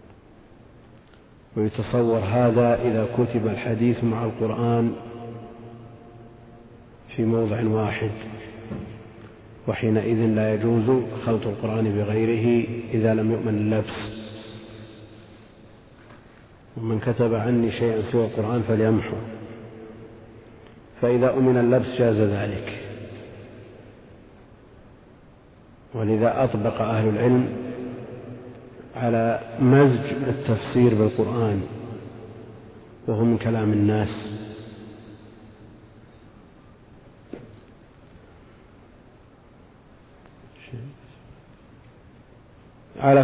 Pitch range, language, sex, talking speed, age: 110-120 Hz, Arabic, male, 60 wpm, 50-69